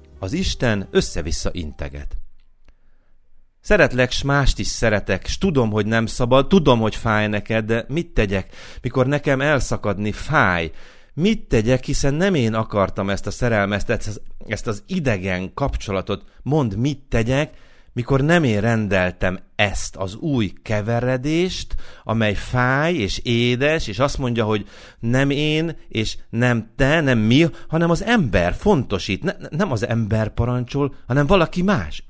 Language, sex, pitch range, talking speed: Hungarian, male, 105-150 Hz, 140 wpm